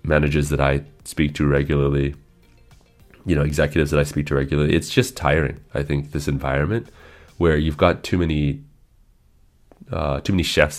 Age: 30-49